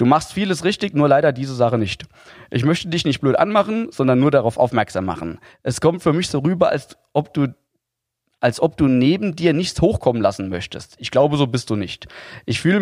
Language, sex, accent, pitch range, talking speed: German, male, German, 115-150 Hz, 215 wpm